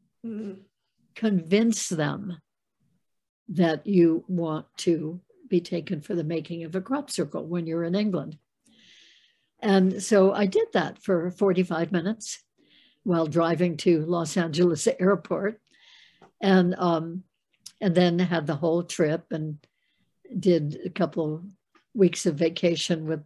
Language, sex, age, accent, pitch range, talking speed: English, female, 60-79, American, 165-190 Hz, 130 wpm